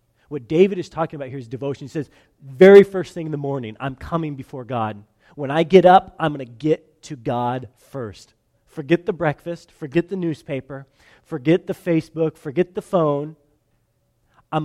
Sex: male